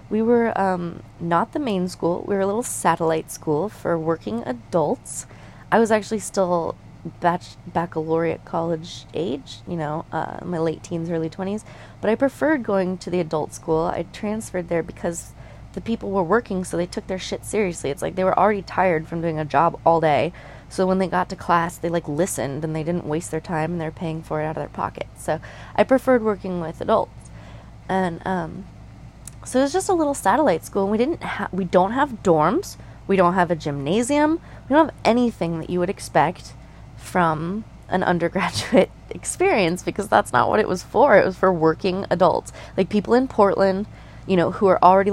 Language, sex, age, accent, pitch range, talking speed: English, female, 20-39, American, 160-200 Hz, 200 wpm